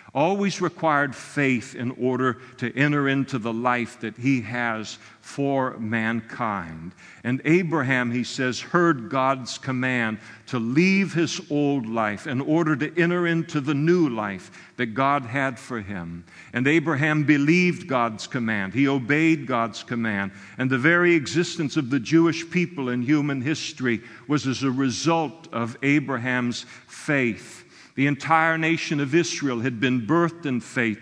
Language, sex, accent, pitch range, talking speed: English, male, American, 125-155 Hz, 150 wpm